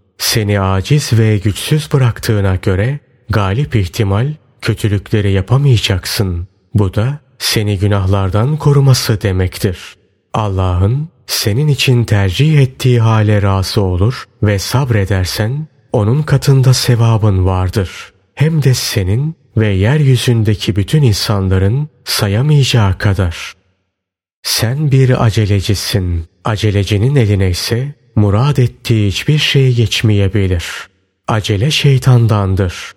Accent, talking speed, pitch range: native, 95 wpm, 100-130 Hz